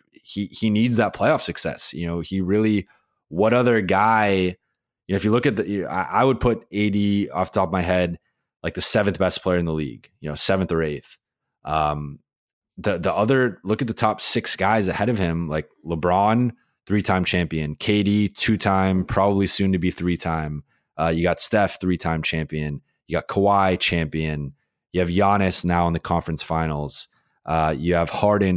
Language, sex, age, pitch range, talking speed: English, male, 20-39, 85-105 Hz, 185 wpm